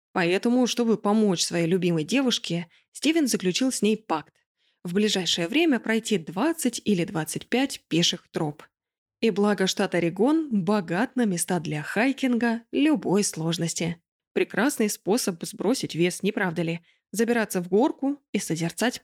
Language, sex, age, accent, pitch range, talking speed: Russian, female, 20-39, native, 180-240 Hz, 135 wpm